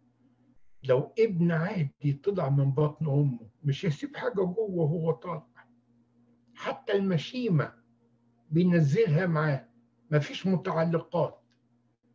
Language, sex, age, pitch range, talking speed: English, male, 60-79, 120-175 Hz, 95 wpm